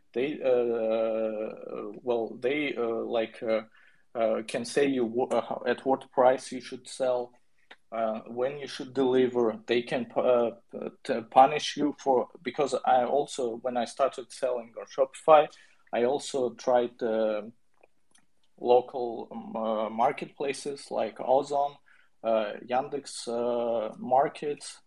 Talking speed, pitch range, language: 130 wpm, 115-135 Hz, English